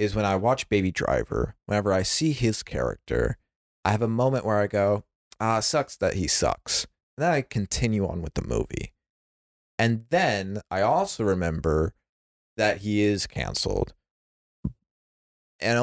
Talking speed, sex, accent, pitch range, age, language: 150 wpm, male, American, 85-110 Hz, 30-49, English